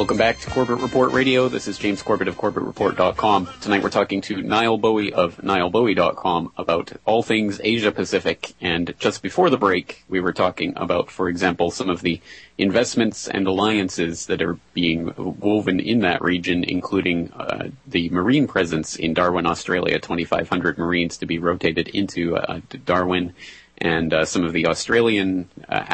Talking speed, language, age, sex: 170 wpm, English, 30-49, male